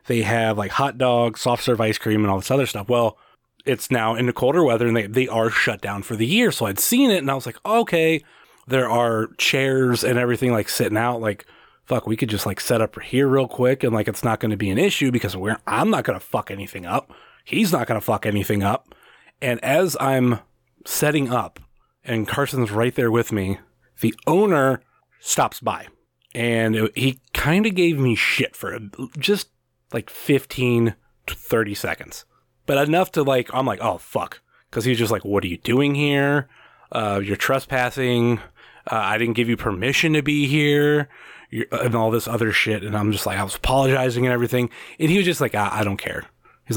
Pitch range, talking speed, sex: 105-135 Hz, 215 wpm, male